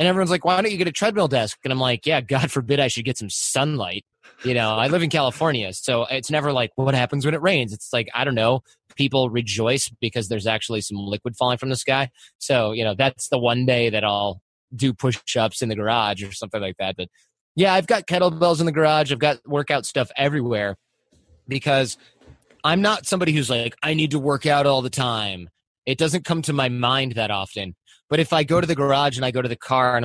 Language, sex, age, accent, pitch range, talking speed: English, male, 20-39, American, 115-155 Hz, 240 wpm